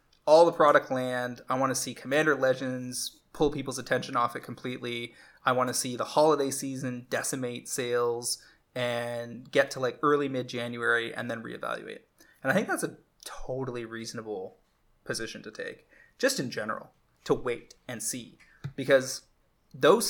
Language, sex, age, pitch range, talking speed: English, male, 20-39, 120-140 Hz, 160 wpm